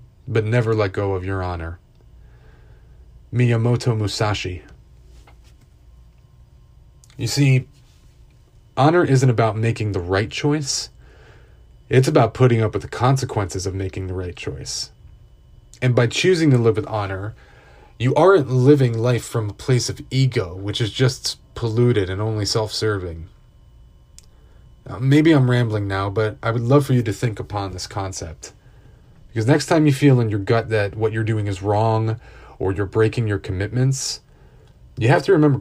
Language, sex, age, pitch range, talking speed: English, male, 30-49, 100-130 Hz, 155 wpm